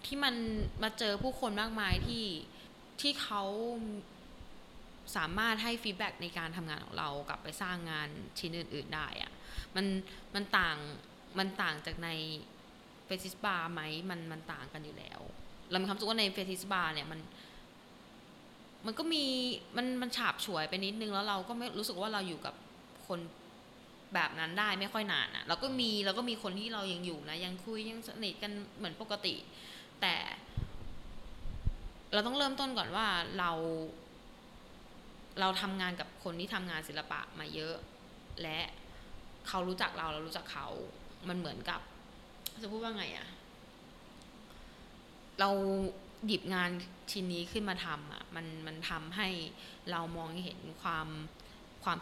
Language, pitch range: Thai, 170-215 Hz